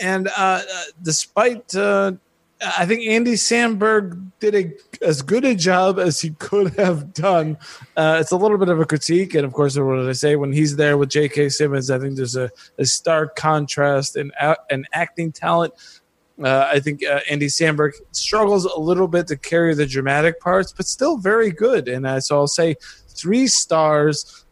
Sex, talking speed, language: male, 185 wpm, English